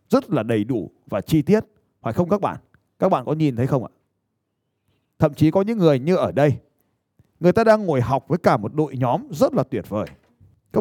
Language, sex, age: Vietnamese, male, 20-39